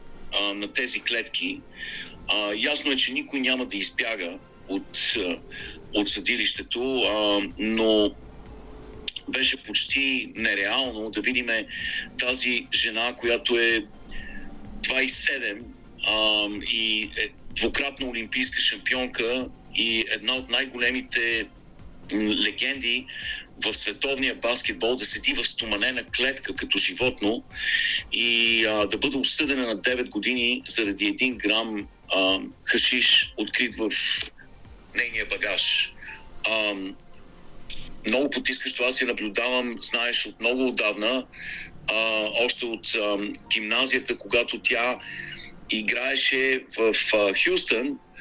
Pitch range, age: 110-130 Hz, 50-69